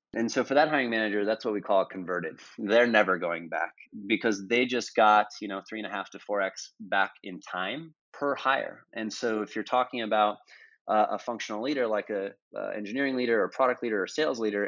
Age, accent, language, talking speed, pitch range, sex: 20-39, American, English, 220 wpm, 105-120 Hz, male